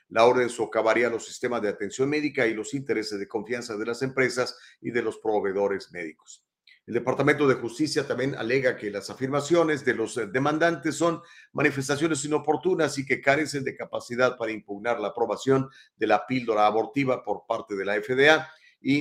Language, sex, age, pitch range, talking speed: Spanish, male, 40-59, 110-145 Hz, 175 wpm